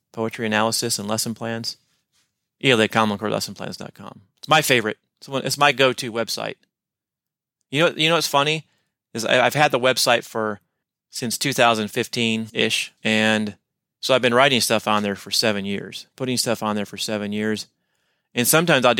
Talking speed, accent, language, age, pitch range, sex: 175 wpm, American, English, 30-49, 115-145 Hz, male